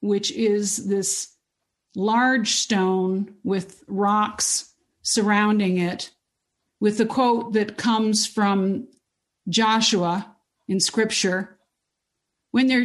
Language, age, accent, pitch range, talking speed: English, 50-69, American, 200-240 Hz, 90 wpm